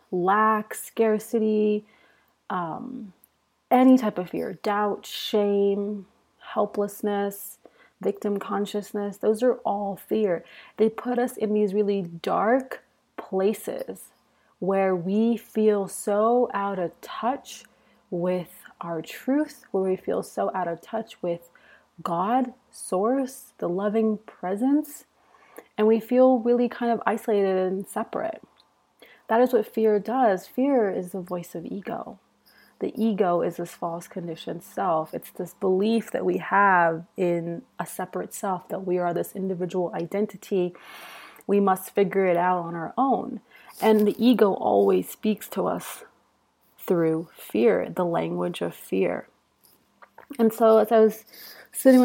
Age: 30-49